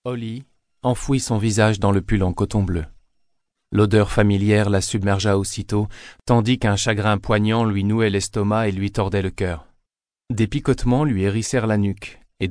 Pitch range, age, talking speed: 95-110 Hz, 40-59, 165 wpm